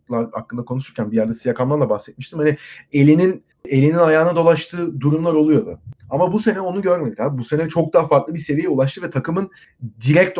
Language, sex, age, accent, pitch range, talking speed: Turkish, male, 30-49, native, 130-165 Hz, 175 wpm